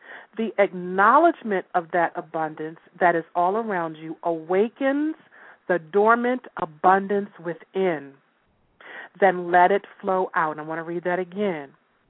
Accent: American